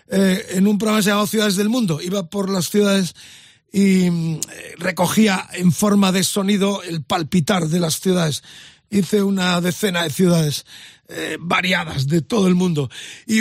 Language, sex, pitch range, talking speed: Spanish, male, 175-215 Hz, 160 wpm